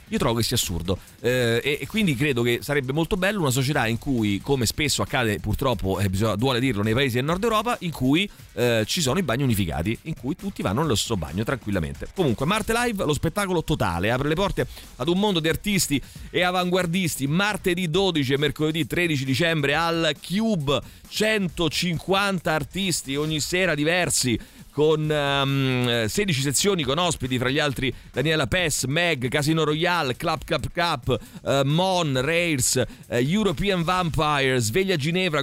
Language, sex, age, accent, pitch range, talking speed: Italian, male, 40-59, native, 130-175 Hz, 170 wpm